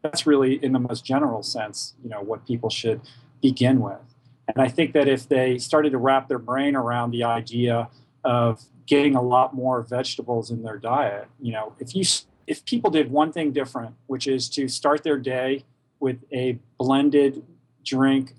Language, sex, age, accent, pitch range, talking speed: English, male, 40-59, American, 125-150 Hz, 185 wpm